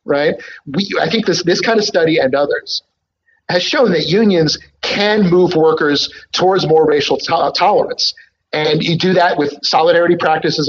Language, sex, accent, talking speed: English, male, American, 170 wpm